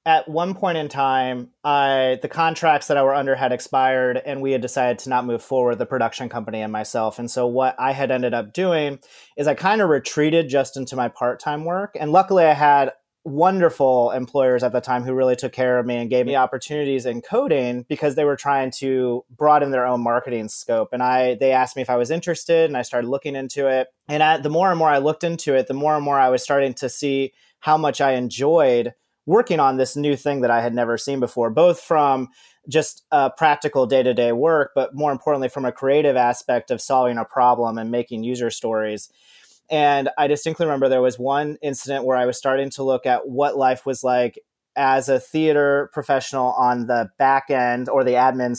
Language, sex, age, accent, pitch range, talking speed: English, male, 30-49, American, 125-145 Hz, 220 wpm